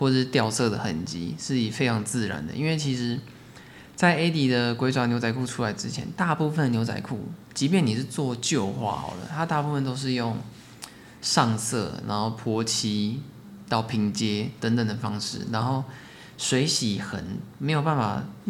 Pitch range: 110-130 Hz